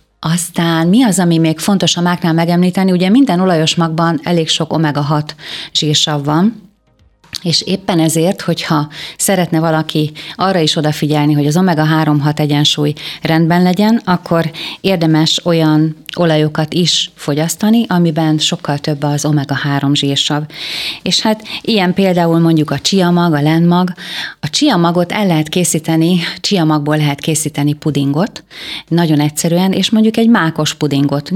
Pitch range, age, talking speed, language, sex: 150-180 Hz, 30-49, 140 wpm, Hungarian, female